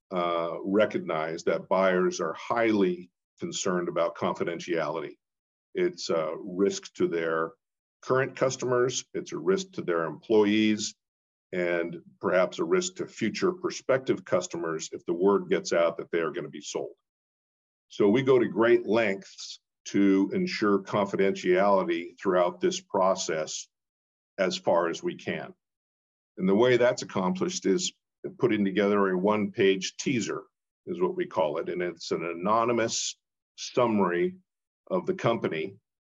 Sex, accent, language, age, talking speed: male, American, English, 50-69, 135 wpm